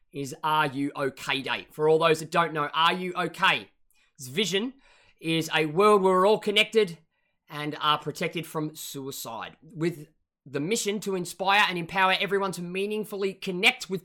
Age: 20-39